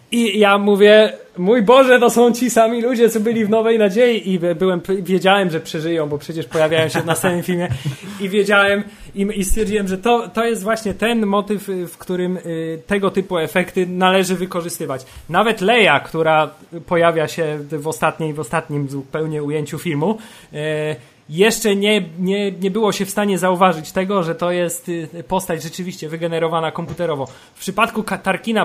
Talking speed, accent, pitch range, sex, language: 165 wpm, native, 160-210 Hz, male, Polish